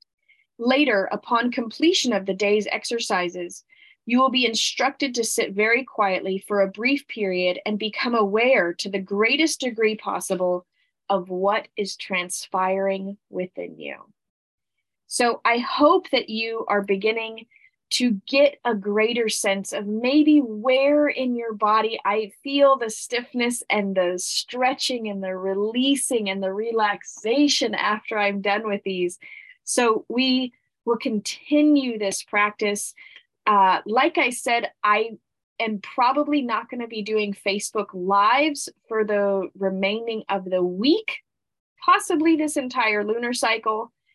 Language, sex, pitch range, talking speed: English, female, 195-255 Hz, 135 wpm